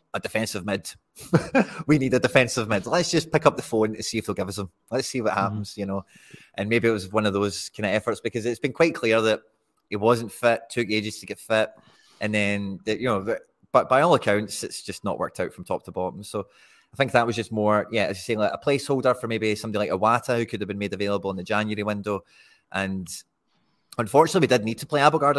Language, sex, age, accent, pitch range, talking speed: English, male, 20-39, British, 100-120 Hz, 250 wpm